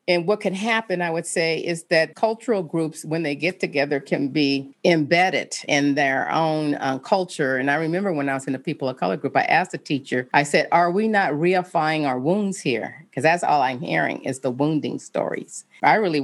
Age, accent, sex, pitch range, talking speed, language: 40-59, American, female, 145-180 Hz, 220 wpm, English